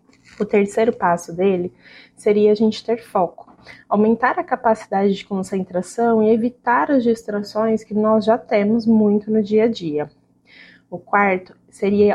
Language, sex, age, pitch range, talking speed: Portuguese, female, 20-39, 200-245 Hz, 150 wpm